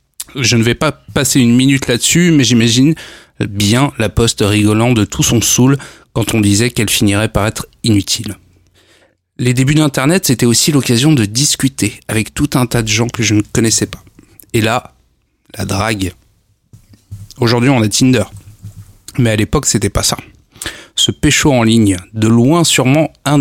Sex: male